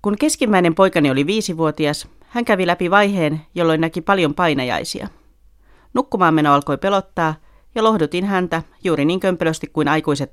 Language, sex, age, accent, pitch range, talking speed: Finnish, female, 30-49, native, 150-190 Hz, 140 wpm